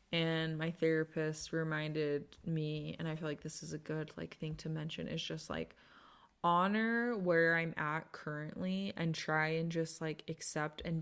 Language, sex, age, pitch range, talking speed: English, female, 20-39, 155-175 Hz, 175 wpm